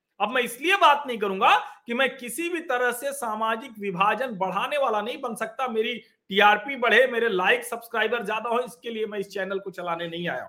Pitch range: 215-275 Hz